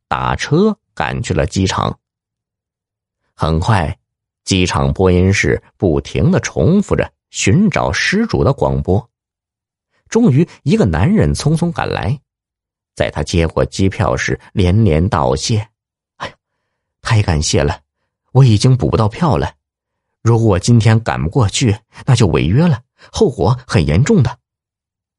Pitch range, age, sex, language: 85-120 Hz, 50-69, male, Chinese